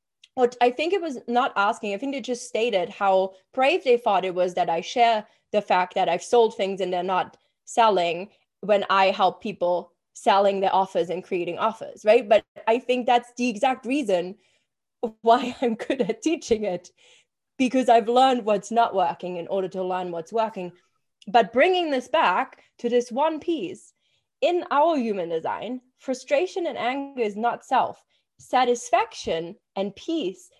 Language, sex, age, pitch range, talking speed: English, female, 20-39, 195-265 Hz, 175 wpm